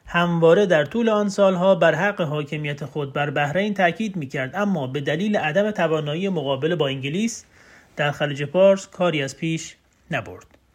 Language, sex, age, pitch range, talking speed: Persian, male, 40-59, 150-190 Hz, 155 wpm